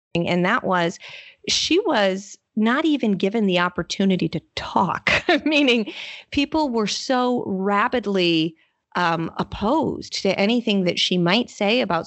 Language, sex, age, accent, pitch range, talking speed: English, female, 30-49, American, 175-250 Hz, 130 wpm